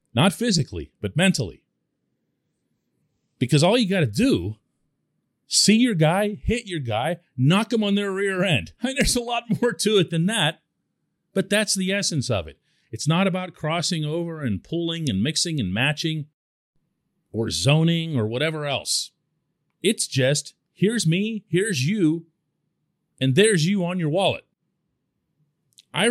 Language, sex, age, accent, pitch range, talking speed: English, male, 40-59, American, 135-195 Hz, 155 wpm